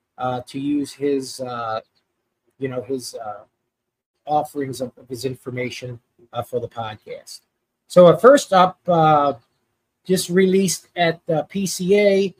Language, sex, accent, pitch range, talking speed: English, male, American, 140-185 Hz, 125 wpm